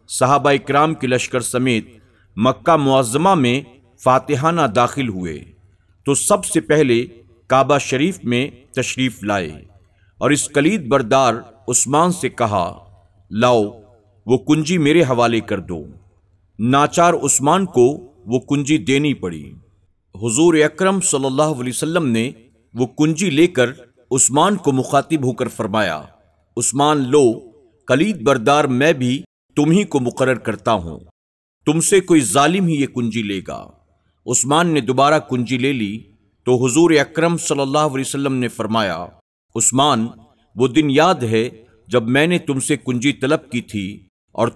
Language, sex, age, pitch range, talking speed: Urdu, male, 50-69, 110-145 Hz, 145 wpm